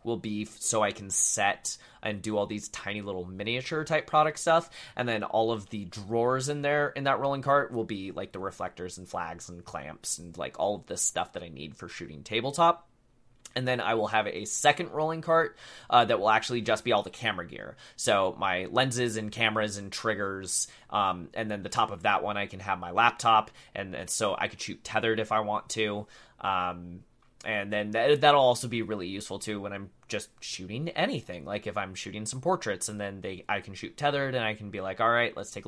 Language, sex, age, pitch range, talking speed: English, male, 20-39, 100-130 Hz, 225 wpm